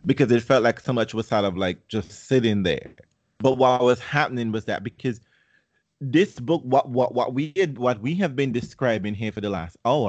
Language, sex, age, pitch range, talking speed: English, male, 30-49, 100-130 Hz, 220 wpm